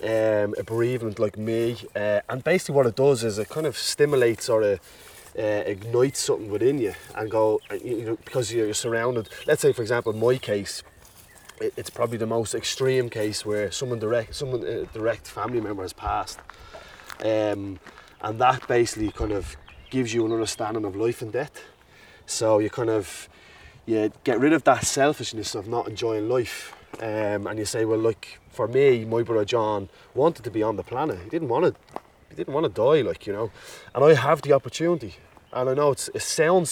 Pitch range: 105-130 Hz